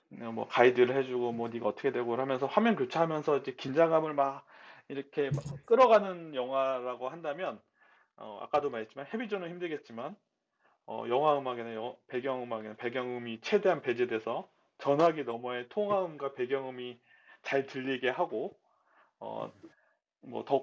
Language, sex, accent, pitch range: Korean, male, native, 130-195 Hz